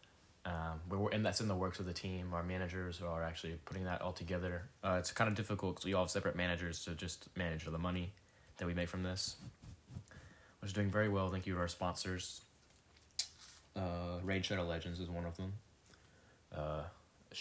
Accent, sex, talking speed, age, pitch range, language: American, male, 195 wpm, 10-29, 85-100 Hz, English